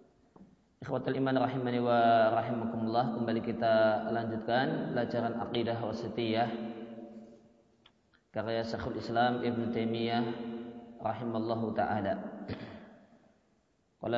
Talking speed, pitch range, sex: 80 wpm, 110-120 Hz, male